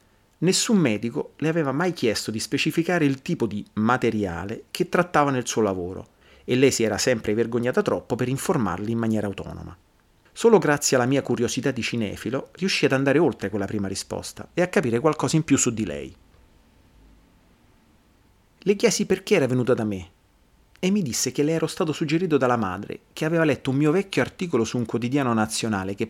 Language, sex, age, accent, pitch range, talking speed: Italian, male, 30-49, native, 100-140 Hz, 185 wpm